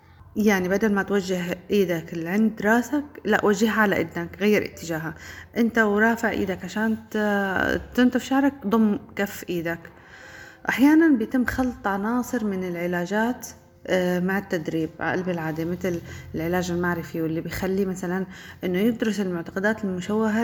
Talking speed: 130 wpm